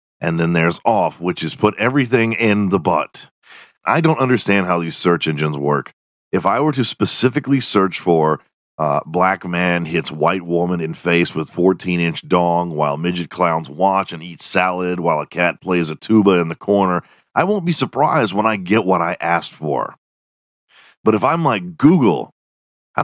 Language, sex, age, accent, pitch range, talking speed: English, male, 40-59, American, 85-130 Hz, 180 wpm